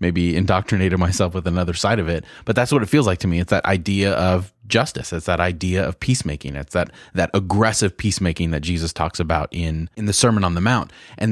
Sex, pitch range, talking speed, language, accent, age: male, 90-110 Hz, 230 wpm, English, American, 30-49